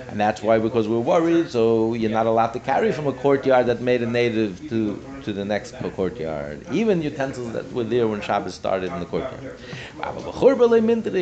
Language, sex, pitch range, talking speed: English, male, 120-155 Hz, 195 wpm